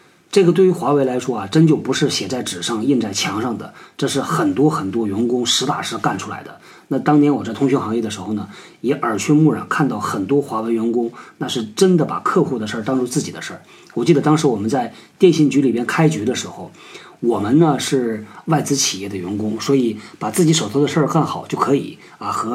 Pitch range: 120-155 Hz